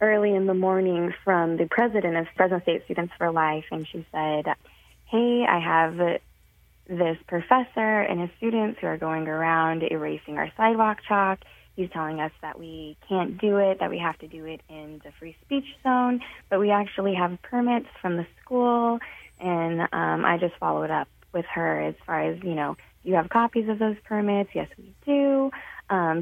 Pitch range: 160-210 Hz